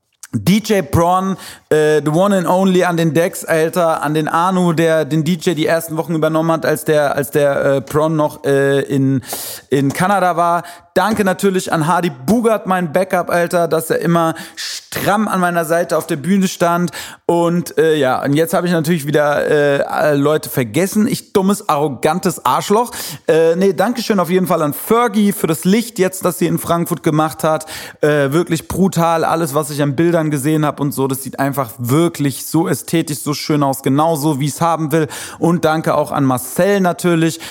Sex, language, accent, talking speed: male, German, German, 190 wpm